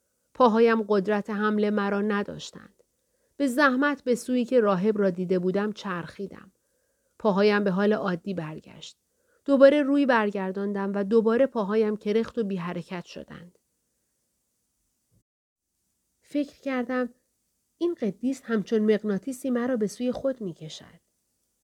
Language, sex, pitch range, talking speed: Persian, female, 195-250 Hz, 115 wpm